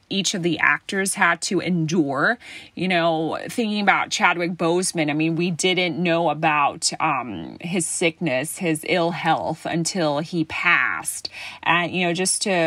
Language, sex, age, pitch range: Thai, female, 30-49, 160-205 Hz